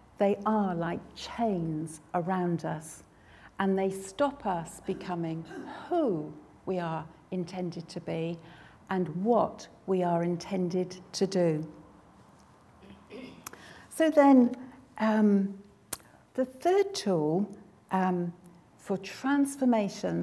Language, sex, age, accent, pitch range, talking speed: English, female, 60-79, British, 170-215 Hz, 100 wpm